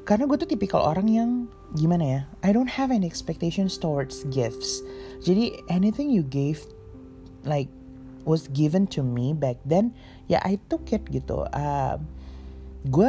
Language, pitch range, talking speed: Indonesian, 135-205 Hz, 155 wpm